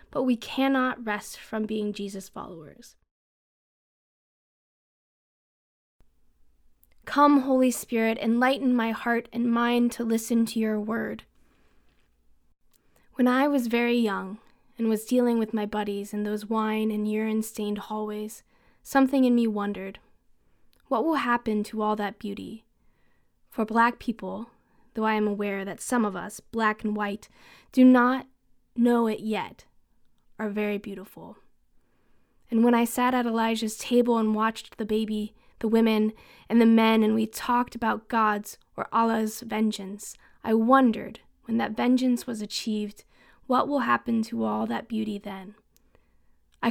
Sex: female